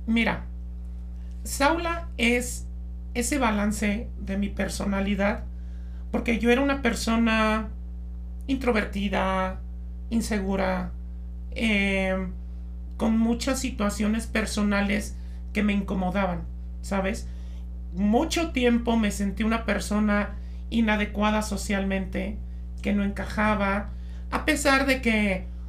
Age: 40-59